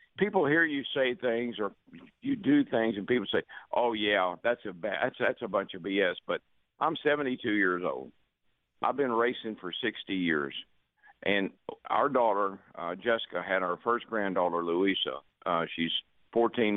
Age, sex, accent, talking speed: 50-69, male, American, 170 wpm